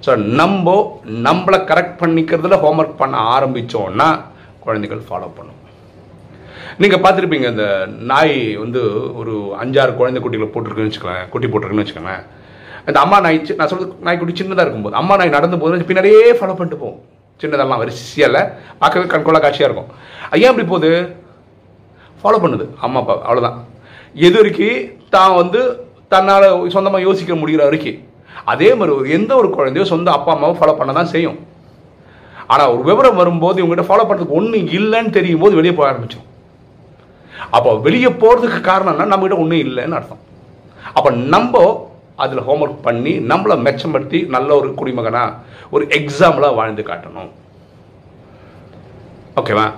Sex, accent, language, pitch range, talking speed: male, native, Tamil, 125-190 Hz, 95 wpm